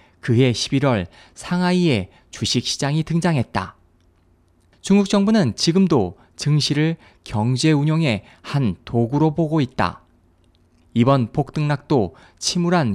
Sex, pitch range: male, 100-165 Hz